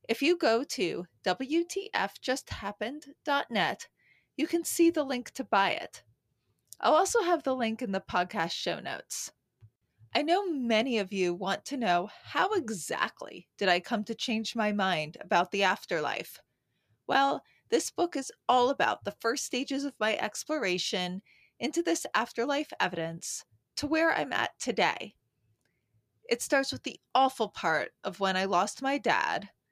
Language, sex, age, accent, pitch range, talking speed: English, female, 30-49, American, 185-270 Hz, 155 wpm